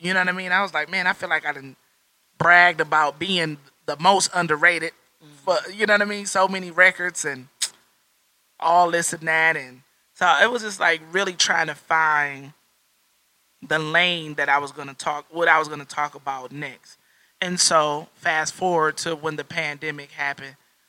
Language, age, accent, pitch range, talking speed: English, 20-39, American, 145-175 Hz, 200 wpm